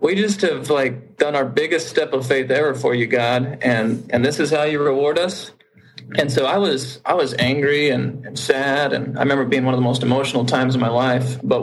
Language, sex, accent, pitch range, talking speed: English, male, American, 125-140 Hz, 235 wpm